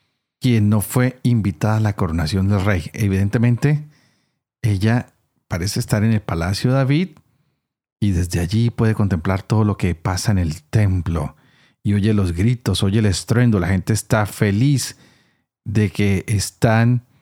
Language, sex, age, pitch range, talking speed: Spanish, male, 40-59, 95-120 Hz, 155 wpm